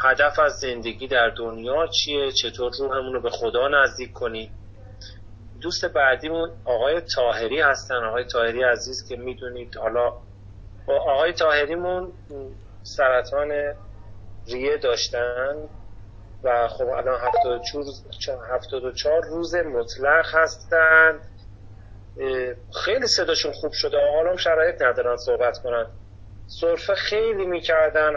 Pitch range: 115-180 Hz